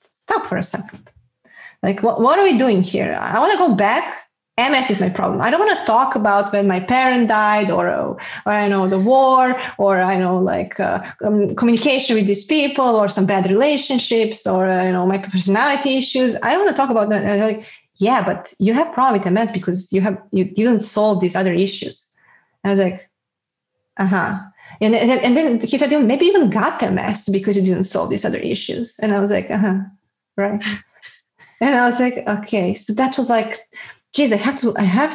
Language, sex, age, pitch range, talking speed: English, female, 20-39, 200-255 Hz, 220 wpm